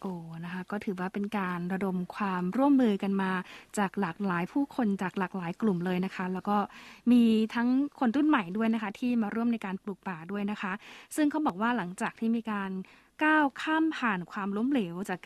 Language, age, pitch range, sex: Thai, 20-39, 200-260 Hz, female